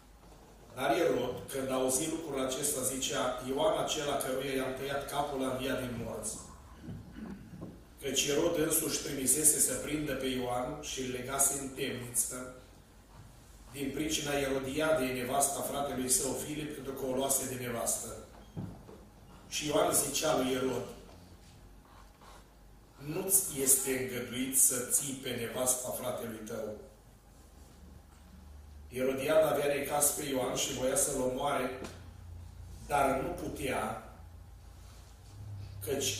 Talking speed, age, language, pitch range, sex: 115 wpm, 30-49, Romanian, 120-140 Hz, male